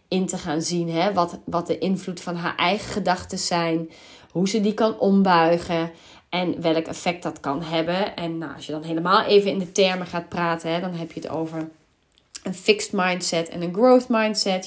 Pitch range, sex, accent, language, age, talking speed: 165-210 Hz, female, Dutch, Dutch, 30-49, 205 wpm